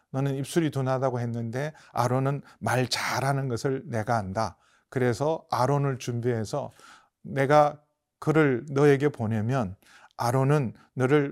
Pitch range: 120-150 Hz